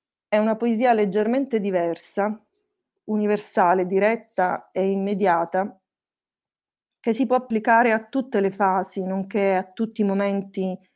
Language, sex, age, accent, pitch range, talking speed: Italian, female, 30-49, native, 185-215 Hz, 120 wpm